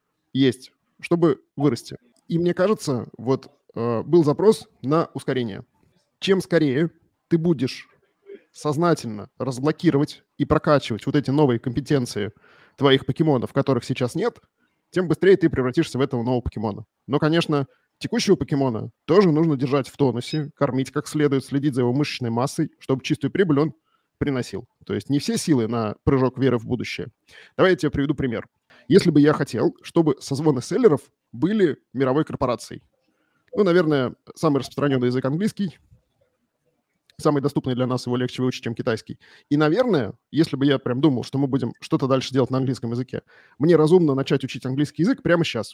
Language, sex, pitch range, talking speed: Russian, male, 125-160 Hz, 160 wpm